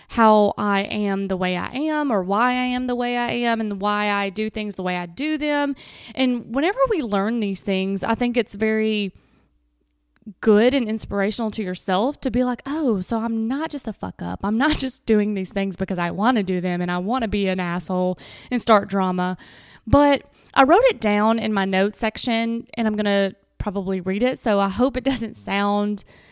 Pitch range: 195-245 Hz